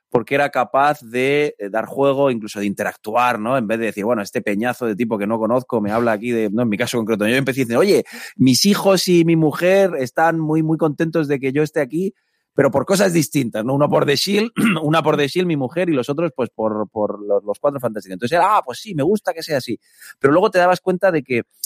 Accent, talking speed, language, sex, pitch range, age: Spanish, 245 wpm, Spanish, male, 115-155 Hz, 30-49